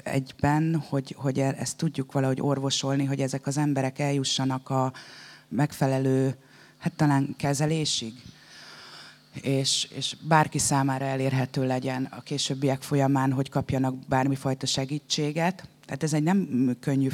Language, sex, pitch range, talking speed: Hungarian, female, 130-145 Hz, 125 wpm